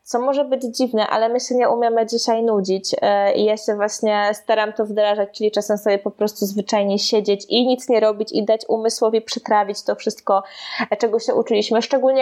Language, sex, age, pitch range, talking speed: Polish, female, 20-39, 215-250 Hz, 190 wpm